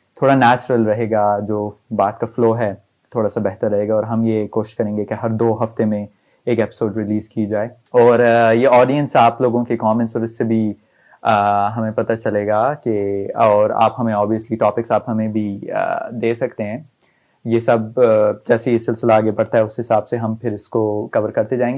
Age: 30-49